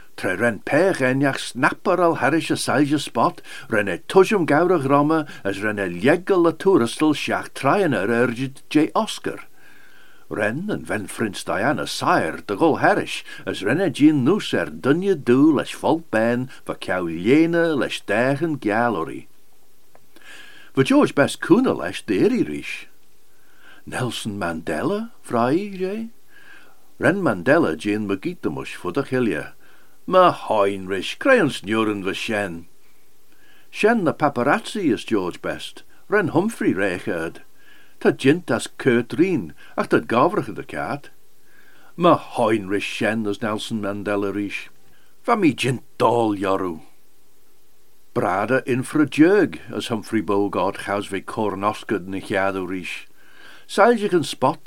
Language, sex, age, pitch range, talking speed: English, male, 60-79, 105-175 Hz, 115 wpm